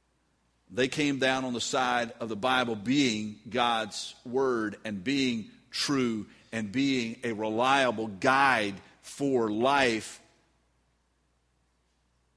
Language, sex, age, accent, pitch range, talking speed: English, male, 50-69, American, 110-150 Hz, 105 wpm